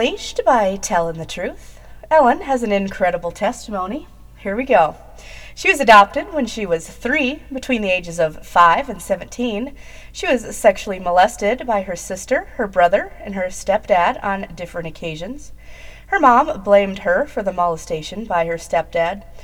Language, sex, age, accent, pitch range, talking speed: English, female, 30-49, American, 175-245 Hz, 160 wpm